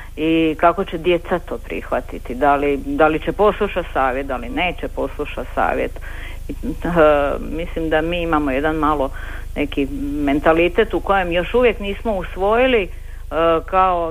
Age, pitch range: 50-69, 145-195 Hz